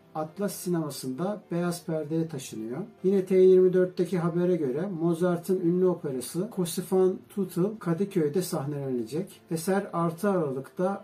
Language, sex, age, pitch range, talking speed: Turkish, male, 60-79, 155-180 Hz, 105 wpm